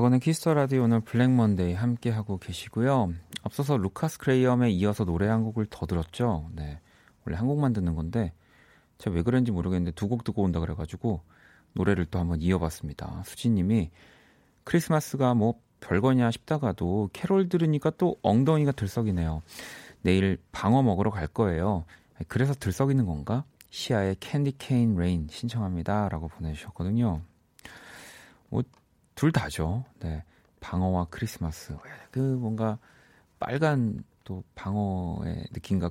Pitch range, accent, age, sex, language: 90-125 Hz, native, 40-59, male, Korean